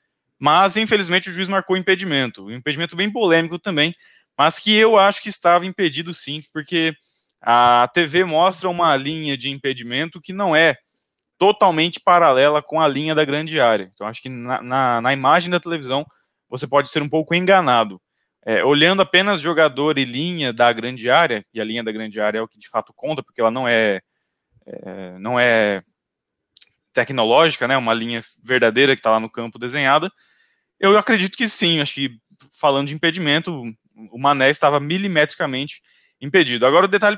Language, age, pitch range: Portuguese, 20-39, 130-185 Hz